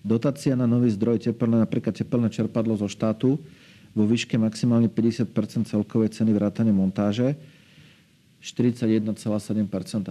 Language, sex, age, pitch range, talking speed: Slovak, male, 40-59, 110-130 Hz, 115 wpm